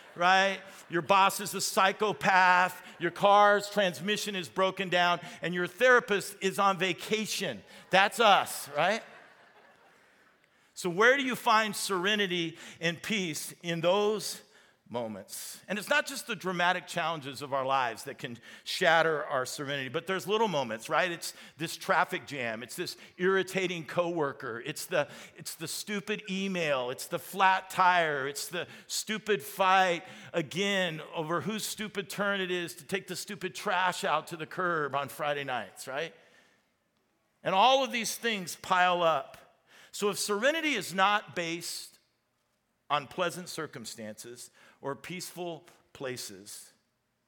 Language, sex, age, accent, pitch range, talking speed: English, male, 50-69, American, 165-200 Hz, 140 wpm